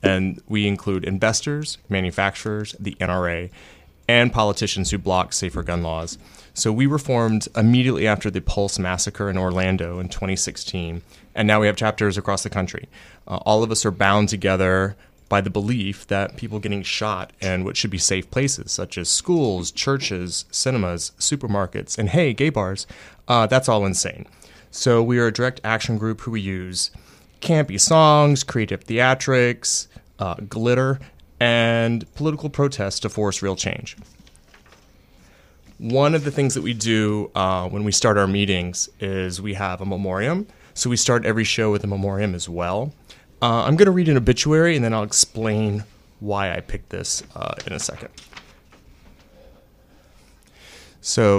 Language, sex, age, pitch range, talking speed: English, male, 30-49, 95-120 Hz, 165 wpm